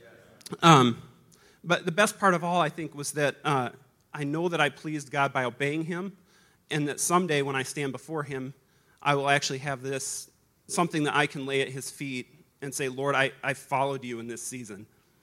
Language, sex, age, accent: English, male, 30-49, American